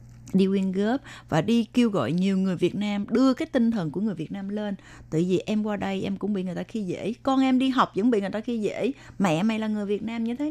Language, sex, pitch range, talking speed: Vietnamese, female, 170-225 Hz, 285 wpm